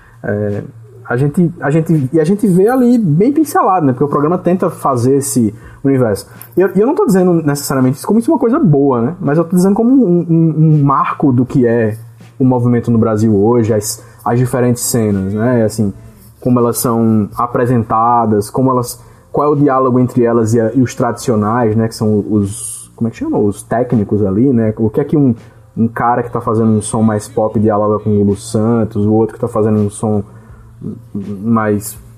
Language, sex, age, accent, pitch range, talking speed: Portuguese, male, 20-39, Brazilian, 110-145 Hz, 210 wpm